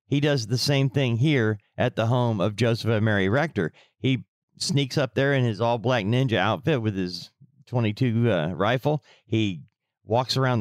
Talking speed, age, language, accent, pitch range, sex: 175 wpm, 40-59, English, American, 115-155 Hz, male